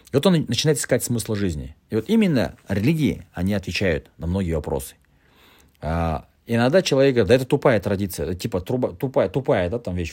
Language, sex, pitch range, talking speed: Russian, male, 90-130 Hz, 185 wpm